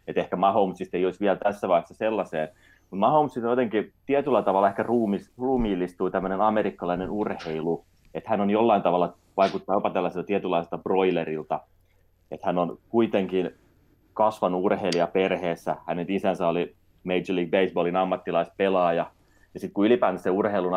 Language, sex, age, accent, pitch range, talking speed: Finnish, male, 30-49, native, 85-100 Hz, 140 wpm